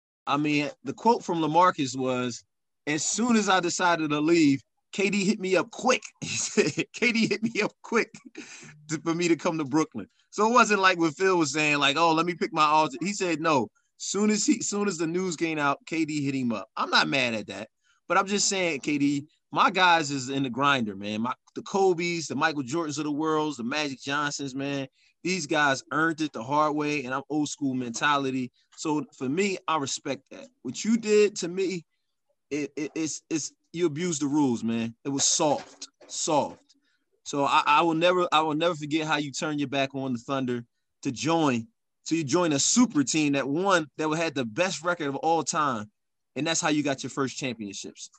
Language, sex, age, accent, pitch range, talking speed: English, male, 20-39, American, 140-180 Hz, 210 wpm